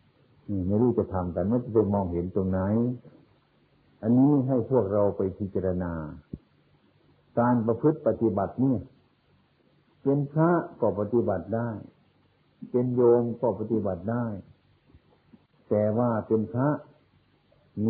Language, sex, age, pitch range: Thai, male, 60-79, 100-125 Hz